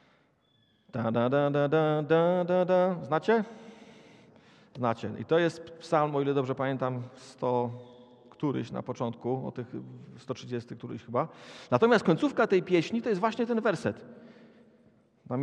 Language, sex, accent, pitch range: Polish, male, native, 130-190 Hz